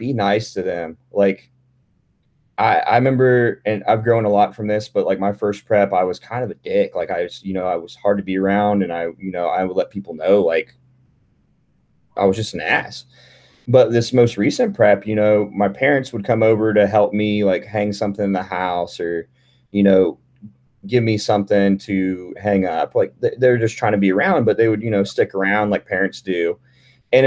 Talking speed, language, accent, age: 220 wpm, English, American, 30-49